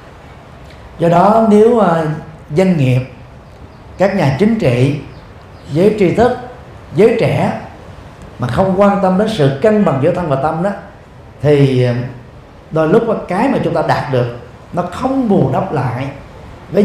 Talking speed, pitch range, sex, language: 155 wpm, 130-180 Hz, male, Vietnamese